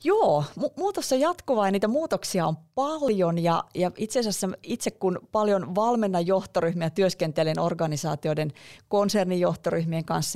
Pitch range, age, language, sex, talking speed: 155-200 Hz, 30-49, Finnish, female, 115 wpm